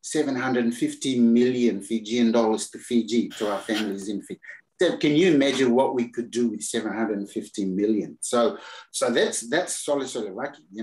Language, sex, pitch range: English, male, 110-130 Hz